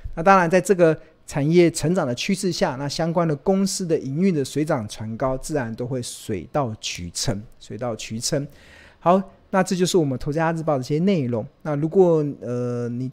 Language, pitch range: Chinese, 120-160 Hz